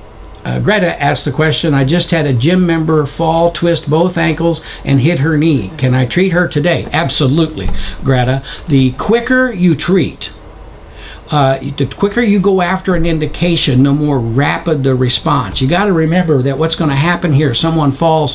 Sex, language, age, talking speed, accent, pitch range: male, English, 60-79, 180 wpm, American, 130-160 Hz